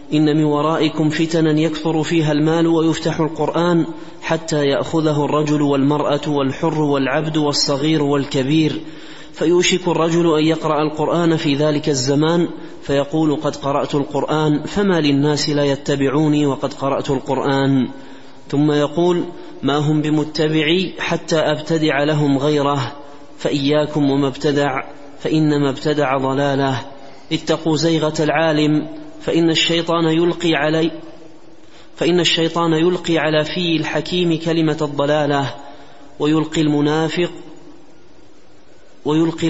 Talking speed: 105 wpm